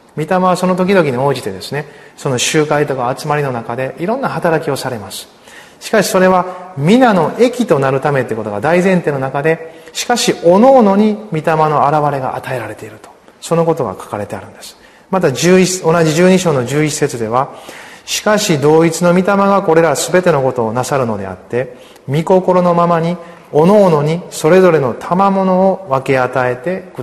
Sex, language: male, Japanese